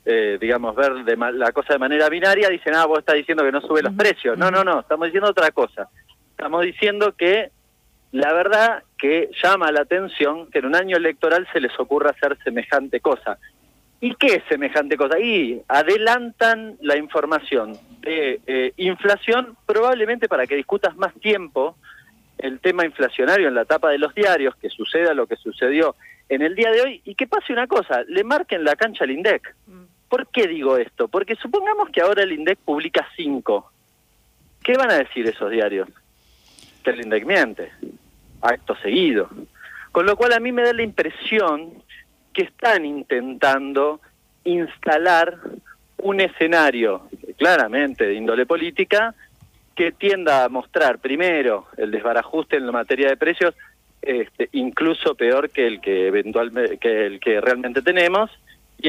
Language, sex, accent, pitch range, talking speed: Spanish, male, Argentinian, 150-240 Hz, 165 wpm